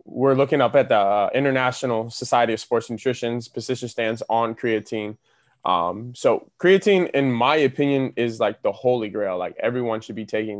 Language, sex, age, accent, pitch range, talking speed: English, male, 20-39, American, 110-130 Hz, 175 wpm